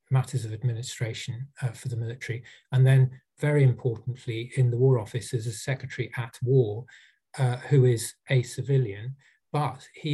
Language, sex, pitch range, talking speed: English, male, 120-135 Hz, 160 wpm